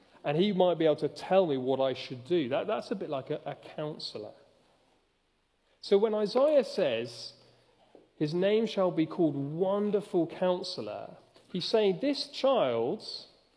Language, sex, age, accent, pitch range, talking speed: English, male, 40-59, British, 155-220 Hz, 150 wpm